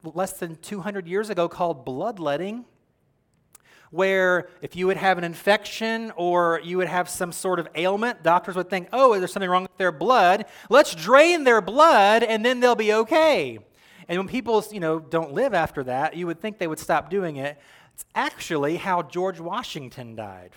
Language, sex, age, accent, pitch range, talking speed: English, male, 30-49, American, 160-200 Hz, 185 wpm